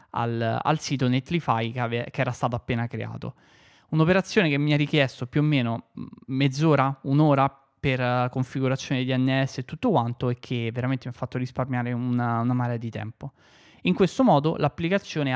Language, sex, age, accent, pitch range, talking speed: Italian, male, 20-39, native, 120-150 Hz, 170 wpm